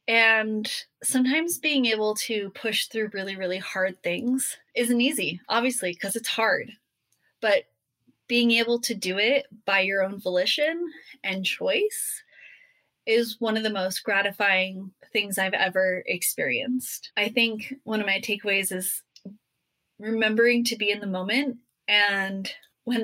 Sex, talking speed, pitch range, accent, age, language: female, 140 wpm, 195-240 Hz, American, 20-39, English